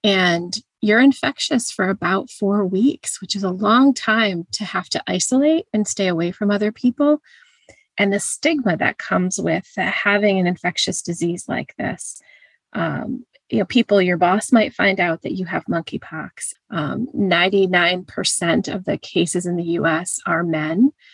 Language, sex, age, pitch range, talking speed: English, female, 30-49, 180-240 Hz, 165 wpm